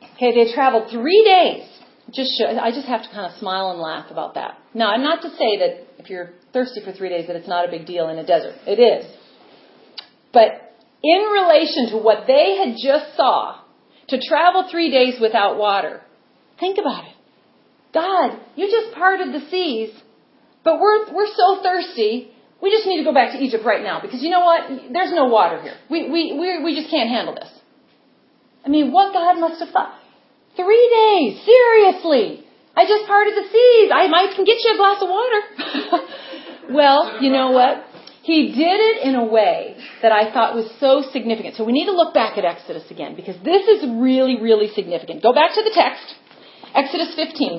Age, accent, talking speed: 40-59, American, 200 wpm